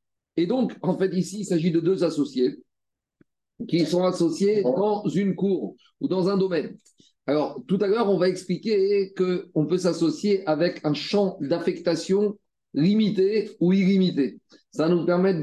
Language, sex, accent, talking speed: French, male, French, 160 wpm